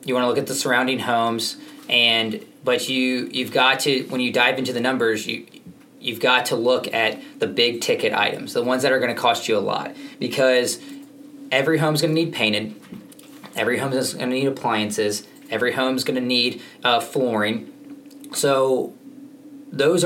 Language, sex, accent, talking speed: English, male, American, 195 wpm